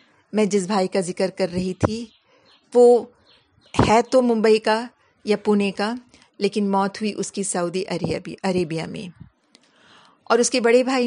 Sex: female